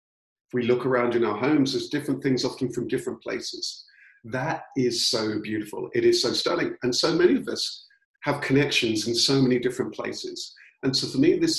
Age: 50-69